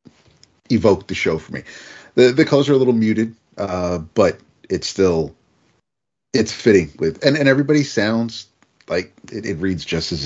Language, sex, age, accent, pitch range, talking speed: English, male, 40-59, American, 75-110 Hz, 170 wpm